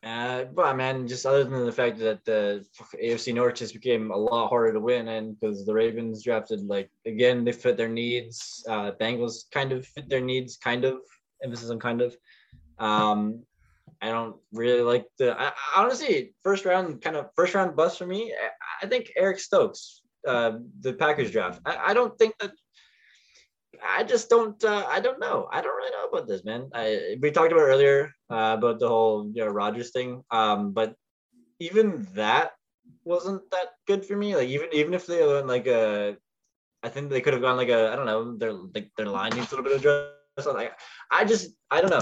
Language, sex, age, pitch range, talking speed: English, male, 20-39, 115-165 Hz, 210 wpm